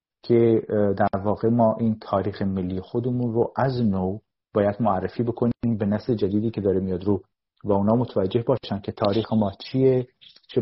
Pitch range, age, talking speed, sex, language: 100-120 Hz, 40-59, 170 wpm, male, Persian